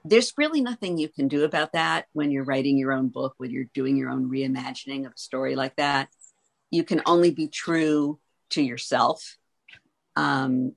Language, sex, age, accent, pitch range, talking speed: English, female, 50-69, American, 140-180 Hz, 185 wpm